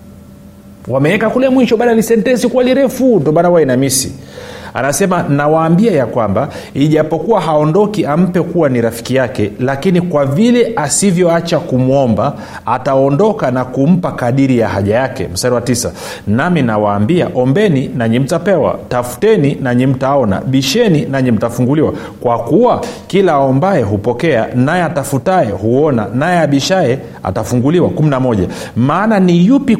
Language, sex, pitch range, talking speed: Swahili, male, 125-180 Hz, 125 wpm